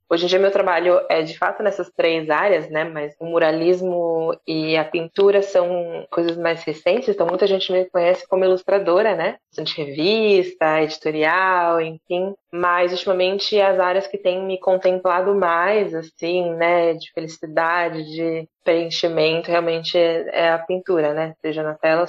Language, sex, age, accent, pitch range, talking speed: Portuguese, female, 20-39, Brazilian, 160-185 Hz, 155 wpm